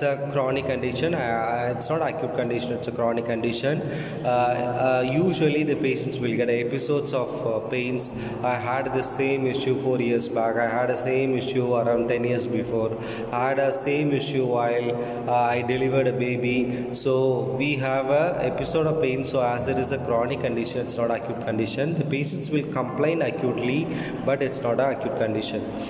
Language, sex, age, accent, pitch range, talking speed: Tamil, male, 20-39, native, 120-145 Hz, 185 wpm